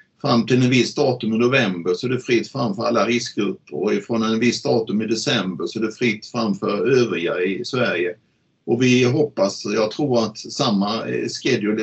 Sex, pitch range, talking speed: male, 110-130 Hz, 190 wpm